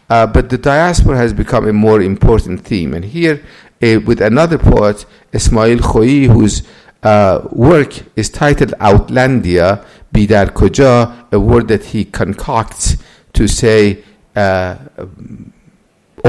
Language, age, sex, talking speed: English, 50-69, male, 125 wpm